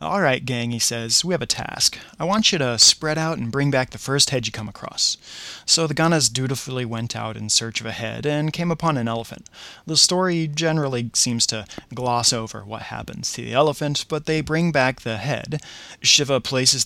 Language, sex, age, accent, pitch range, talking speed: English, male, 30-49, American, 115-150 Hz, 215 wpm